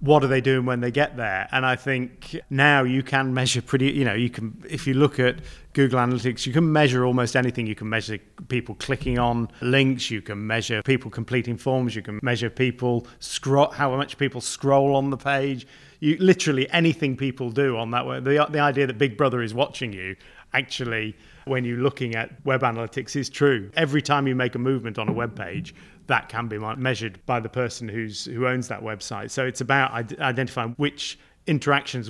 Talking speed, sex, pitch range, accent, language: 205 wpm, male, 115-140 Hz, British, English